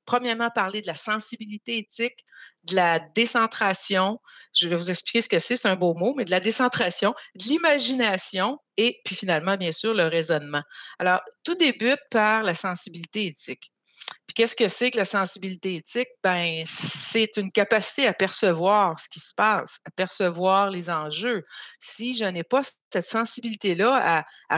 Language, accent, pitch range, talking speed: French, Canadian, 180-235 Hz, 170 wpm